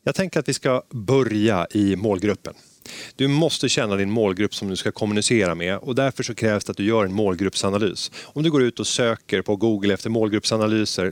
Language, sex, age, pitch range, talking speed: Swedish, male, 30-49, 100-130 Hz, 205 wpm